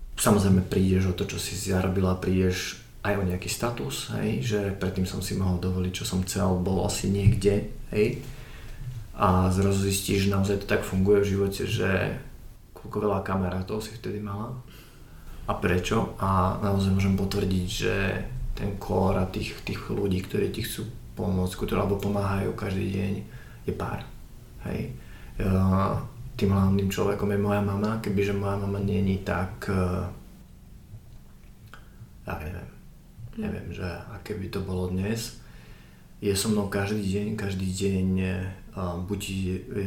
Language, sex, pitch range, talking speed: Slovak, male, 95-105 Hz, 145 wpm